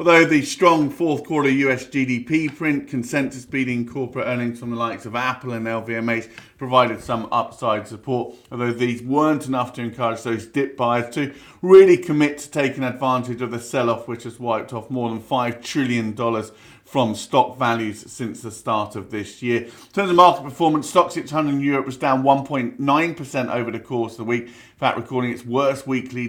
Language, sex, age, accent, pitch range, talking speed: English, male, 40-59, British, 120-140 Hz, 185 wpm